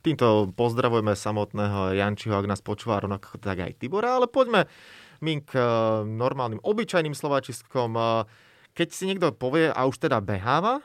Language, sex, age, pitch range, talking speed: Slovak, male, 30-49, 120-155 Hz, 140 wpm